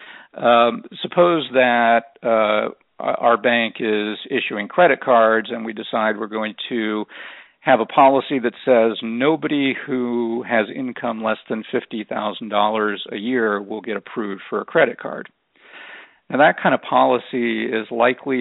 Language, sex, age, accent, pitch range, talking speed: English, male, 50-69, American, 110-125 Hz, 145 wpm